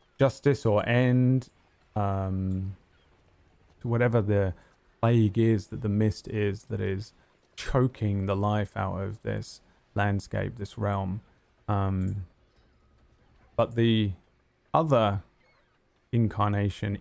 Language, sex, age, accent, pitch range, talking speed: English, male, 20-39, British, 95-110 Hz, 100 wpm